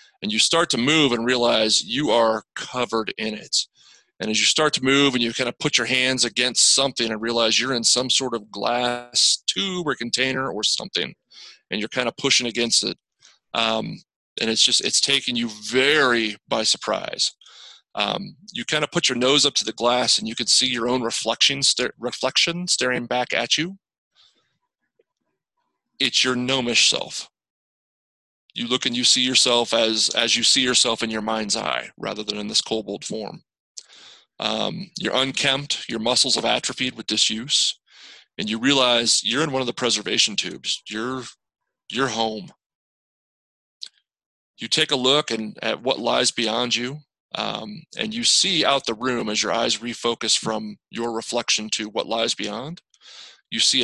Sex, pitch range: male, 115-135 Hz